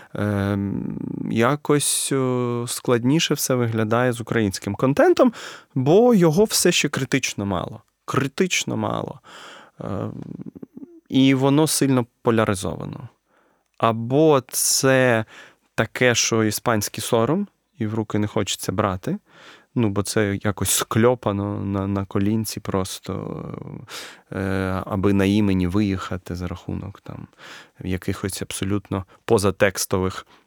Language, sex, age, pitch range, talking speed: Ukrainian, male, 20-39, 100-130 Hz, 100 wpm